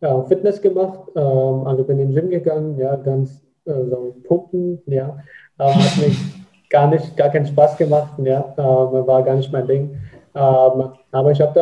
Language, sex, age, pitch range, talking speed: German, male, 20-39, 130-150 Hz, 155 wpm